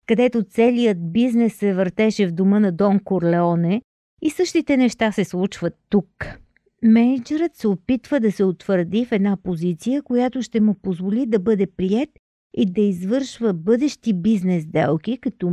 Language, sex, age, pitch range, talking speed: Bulgarian, female, 50-69, 190-255 Hz, 150 wpm